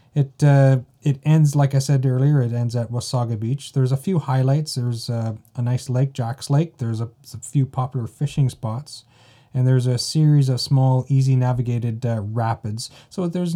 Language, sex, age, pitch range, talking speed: English, male, 30-49, 120-140 Hz, 185 wpm